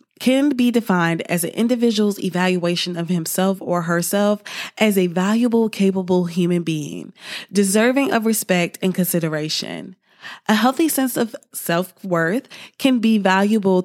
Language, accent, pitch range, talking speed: English, American, 175-230 Hz, 130 wpm